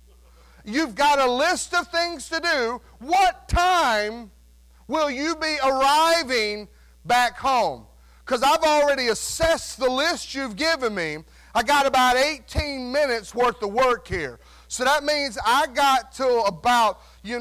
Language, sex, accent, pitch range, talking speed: English, male, American, 200-285 Hz, 145 wpm